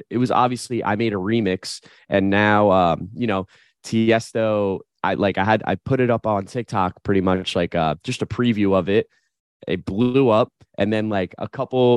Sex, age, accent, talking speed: male, 20-39, American, 200 wpm